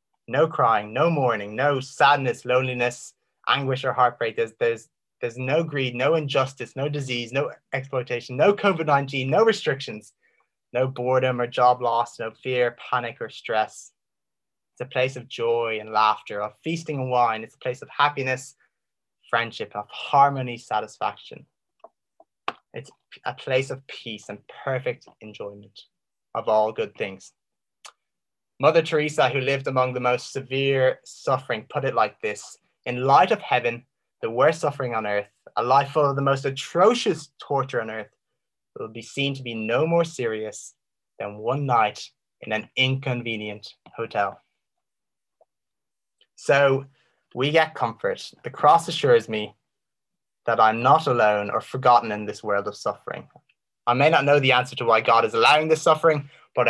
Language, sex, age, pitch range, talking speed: English, male, 20-39, 115-145 Hz, 155 wpm